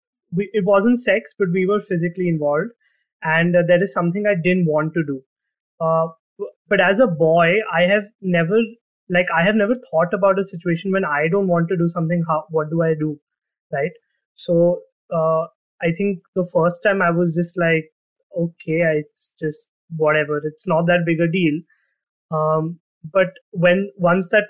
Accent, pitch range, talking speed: native, 160-190 Hz, 180 wpm